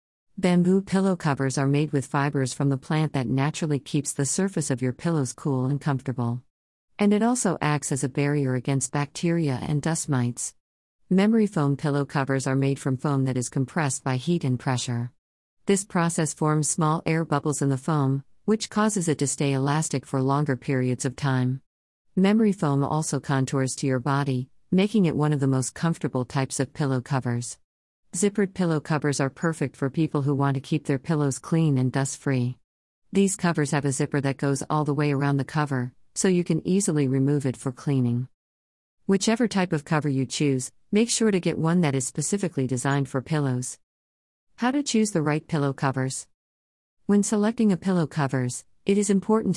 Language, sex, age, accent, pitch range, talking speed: English, female, 50-69, American, 130-160 Hz, 190 wpm